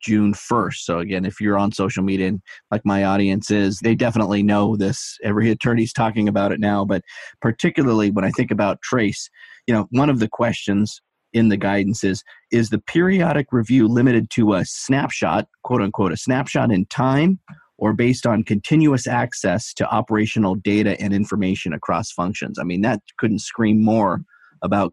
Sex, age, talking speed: male, 30-49, 180 wpm